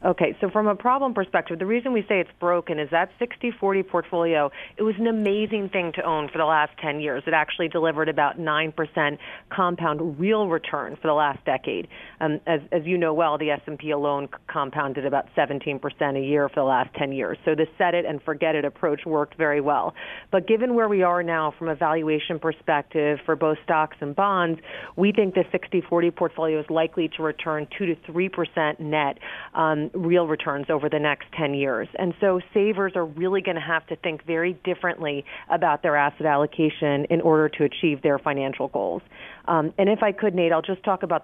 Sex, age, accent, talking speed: female, 40-59, American, 200 wpm